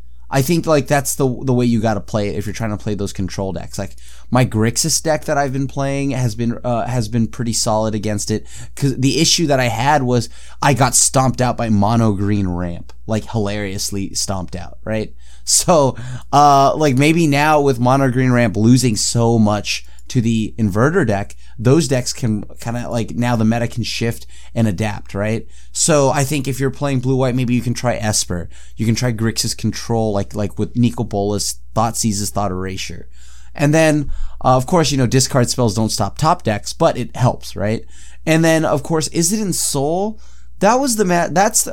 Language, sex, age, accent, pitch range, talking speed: English, male, 30-49, American, 100-140 Hz, 205 wpm